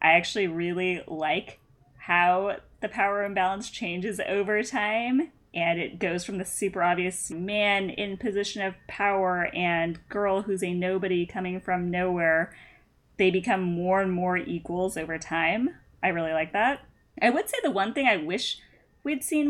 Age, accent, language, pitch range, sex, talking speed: 10-29, American, English, 180-235 Hz, female, 165 wpm